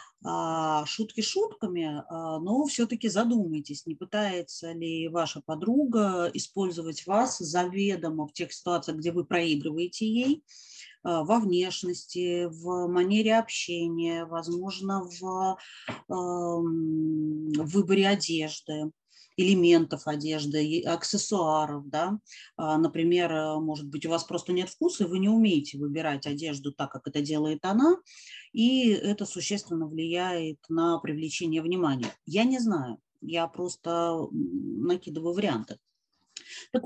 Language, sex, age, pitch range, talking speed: Russian, female, 30-49, 160-215 Hz, 110 wpm